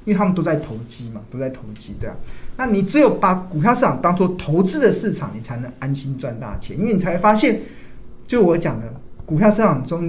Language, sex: Chinese, male